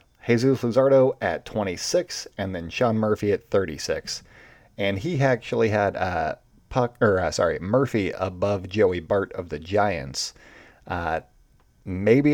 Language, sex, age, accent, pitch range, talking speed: English, male, 30-49, American, 95-120 Hz, 140 wpm